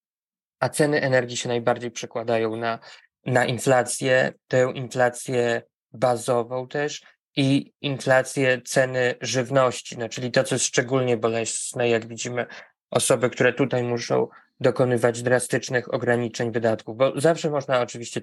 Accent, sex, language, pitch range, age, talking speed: native, male, Polish, 120-130 Hz, 20-39, 125 wpm